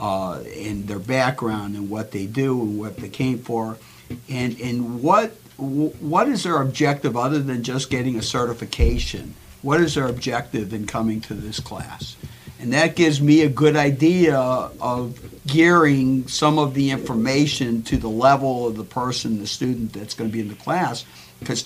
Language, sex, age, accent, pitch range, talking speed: English, male, 50-69, American, 120-155 Hz, 175 wpm